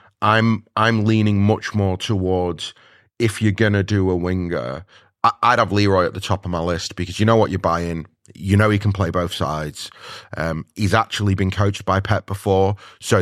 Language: English